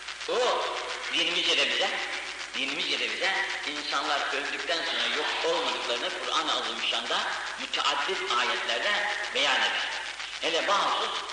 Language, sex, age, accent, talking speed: Turkish, male, 50-69, native, 95 wpm